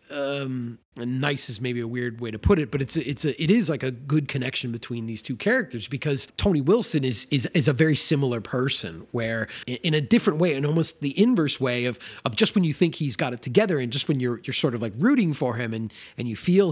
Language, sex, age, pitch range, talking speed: English, male, 30-49, 125-175 Hz, 255 wpm